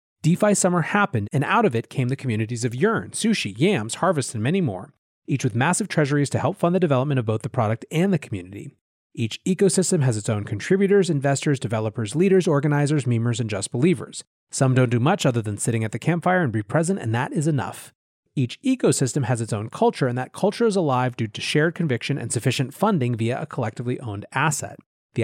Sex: male